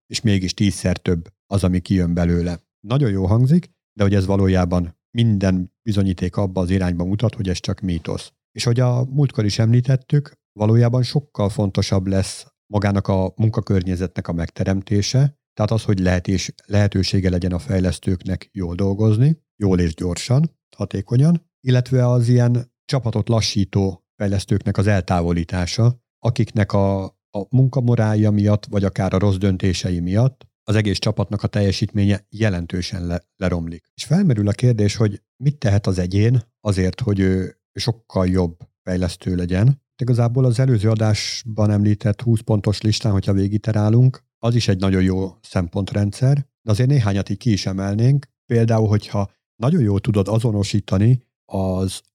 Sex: male